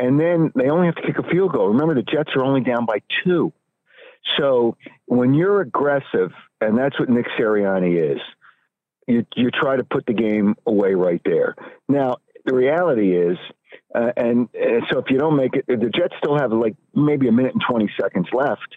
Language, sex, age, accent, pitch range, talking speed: English, male, 50-69, American, 120-155 Hz, 200 wpm